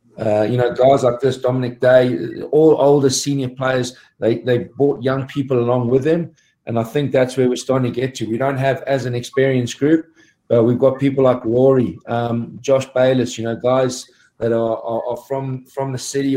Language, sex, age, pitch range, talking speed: English, male, 40-59, 120-135 Hz, 210 wpm